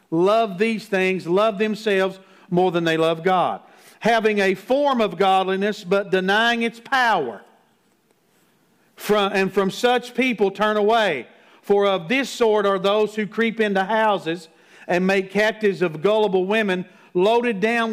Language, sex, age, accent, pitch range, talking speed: English, male, 50-69, American, 170-215 Hz, 145 wpm